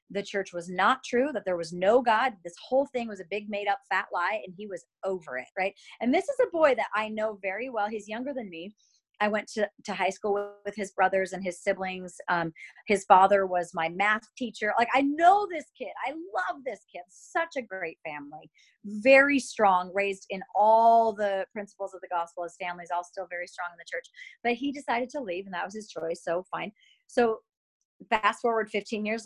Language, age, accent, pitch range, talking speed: English, 30-49, American, 180-255 Hz, 225 wpm